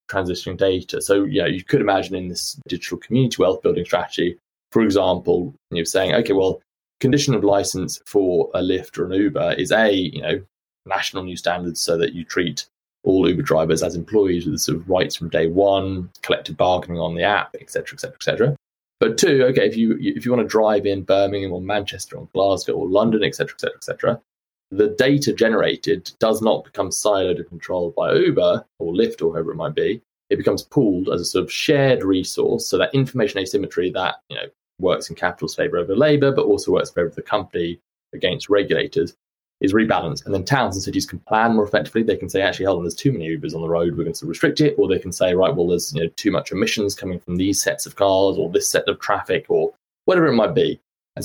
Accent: British